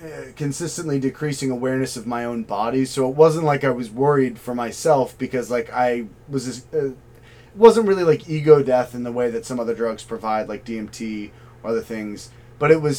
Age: 30-49